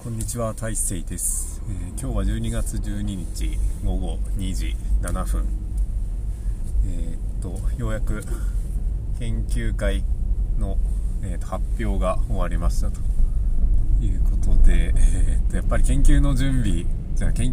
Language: Japanese